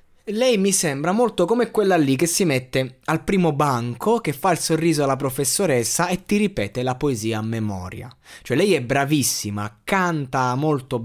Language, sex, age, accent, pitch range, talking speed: Italian, male, 20-39, native, 130-190 Hz, 175 wpm